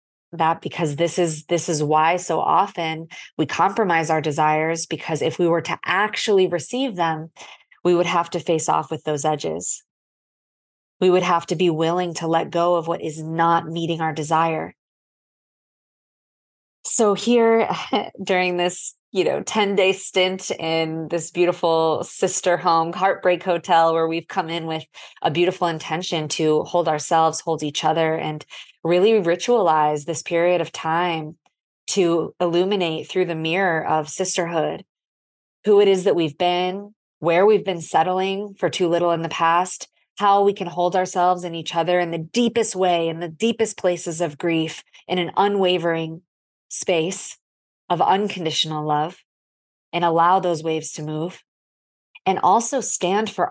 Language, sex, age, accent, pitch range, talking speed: English, female, 20-39, American, 160-185 Hz, 160 wpm